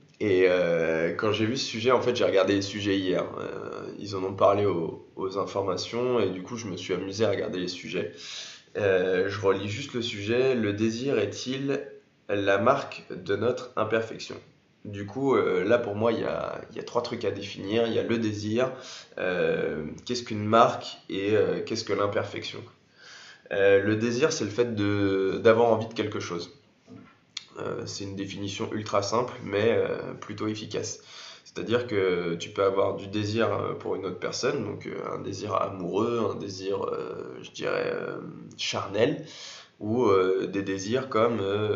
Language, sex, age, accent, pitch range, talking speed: English, male, 20-39, French, 100-120 Hz, 175 wpm